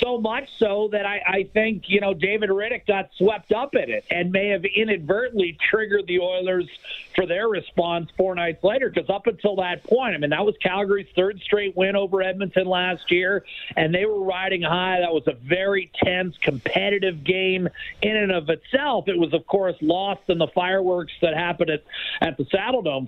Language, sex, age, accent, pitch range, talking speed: English, male, 50-69, American, 175-215 Hz, 200 wpm